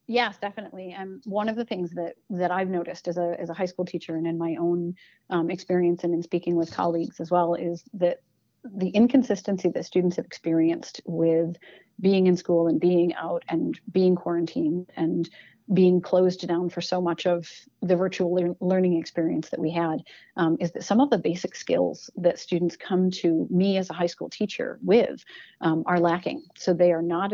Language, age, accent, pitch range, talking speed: English, 40-59, American, 170-185 Hz, 195 wpm